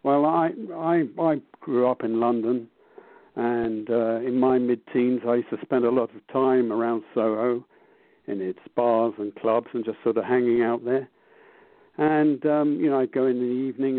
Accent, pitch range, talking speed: British, 115-145 Hz, 190 wpm